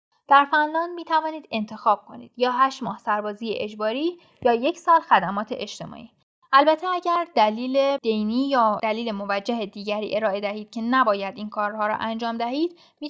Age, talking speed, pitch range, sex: 10-29, 155 wpm, 215-275 Hz, female